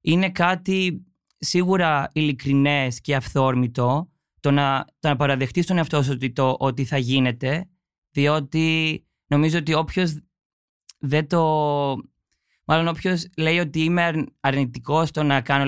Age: 20-39